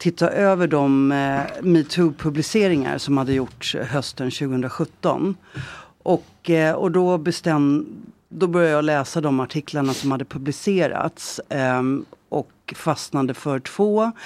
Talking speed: 120 wpm